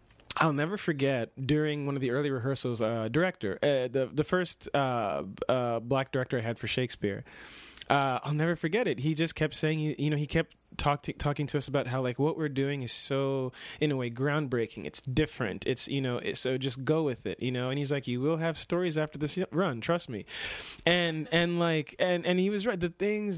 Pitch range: 130-160 Hz